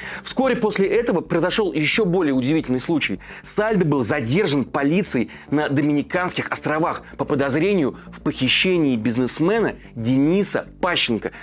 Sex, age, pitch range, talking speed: male, 30-49, 145-200 Hz, 115 wpm